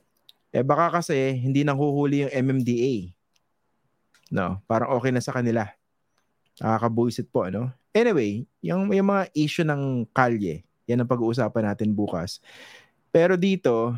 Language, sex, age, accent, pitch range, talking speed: English, male, 20-39, Filipino, 110-130 Hz, 135 wpm